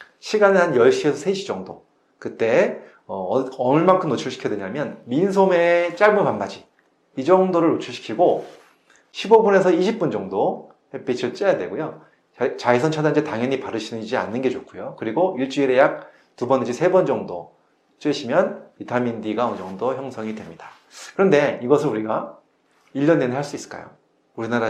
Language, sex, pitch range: Korean, male, 130-180 Hz